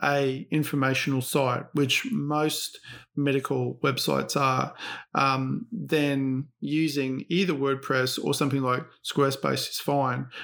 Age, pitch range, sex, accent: 40-59, 130-145 Hz, male, Australian